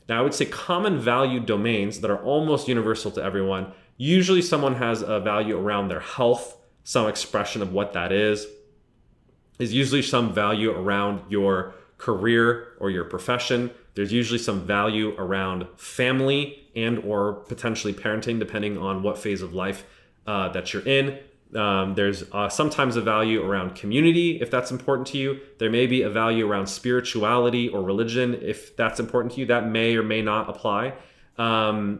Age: 30-49